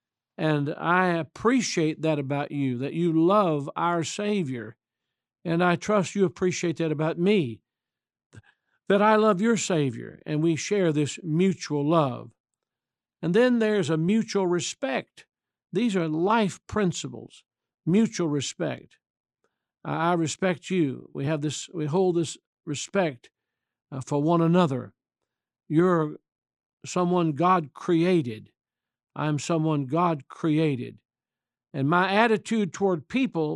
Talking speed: 120 wpm